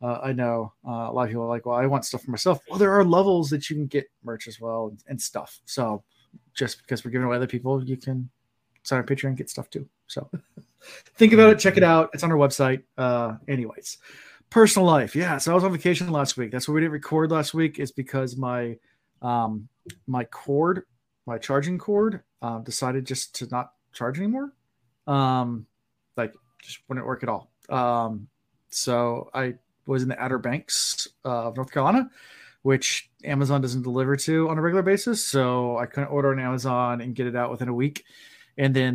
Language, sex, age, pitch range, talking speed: English, male, 30-49, 120-160 Hz, 210 wpm